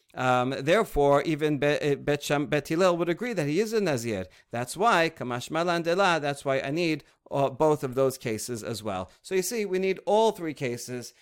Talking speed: 180 wpm